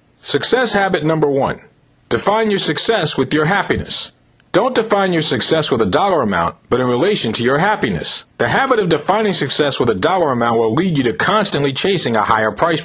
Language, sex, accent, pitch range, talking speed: English, male, American, 130-195 Hz, 195 wpm